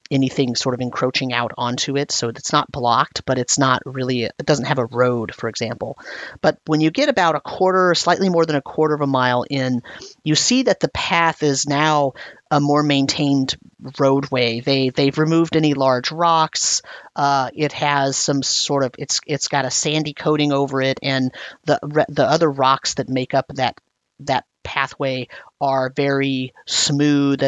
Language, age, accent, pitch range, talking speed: English, 30-49, American, 130-155 Hz, 180 wpm